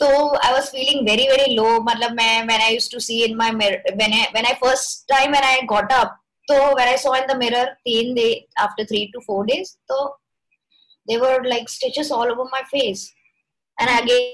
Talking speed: 50 wpm